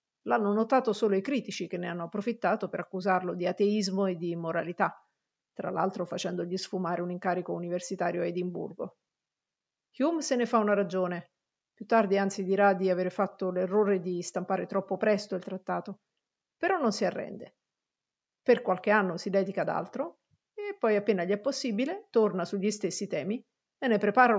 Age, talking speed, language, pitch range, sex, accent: 50-69, 170 wpm, Italian, 185-225 Hz, female, native